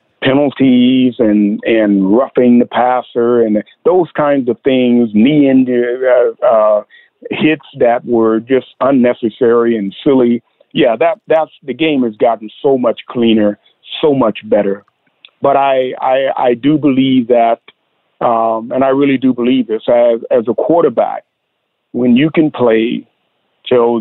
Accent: American